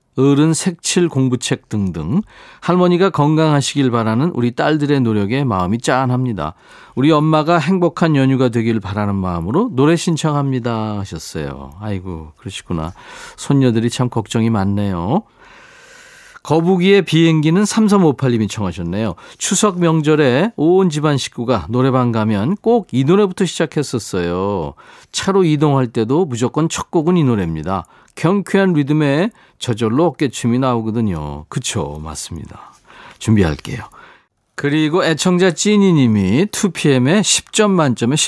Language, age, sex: Korean, 40-59, male